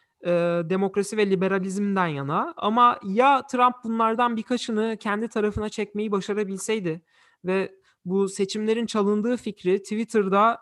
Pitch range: 180-245 Hz